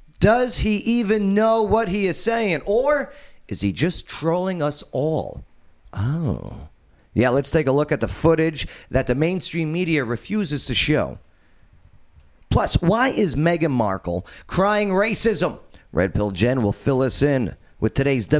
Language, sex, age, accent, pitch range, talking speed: English, male, 40-59, American, 110-185 Hz, 155 wpm